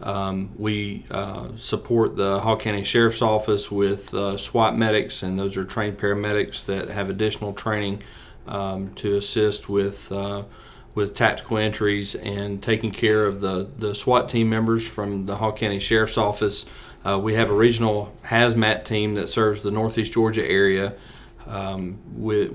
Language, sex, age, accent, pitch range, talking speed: English, male, 40-59, American, 100-110 Hz, 160 wpm